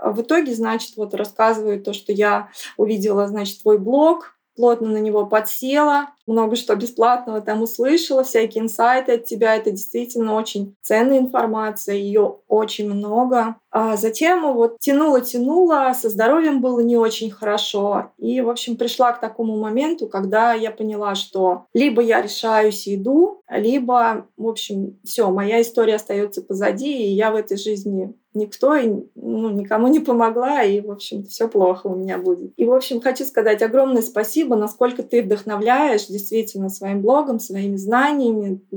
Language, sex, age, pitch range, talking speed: Russian, female, 20-39, 210-255 Hz, 160 wpm